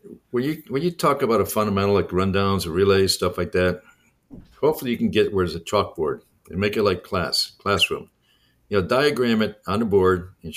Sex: male